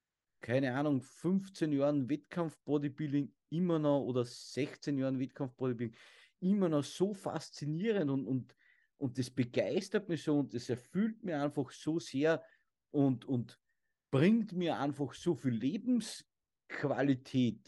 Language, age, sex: English, 50-69, male